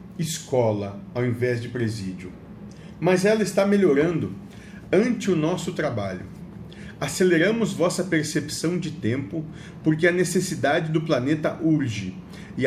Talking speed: 120 wpm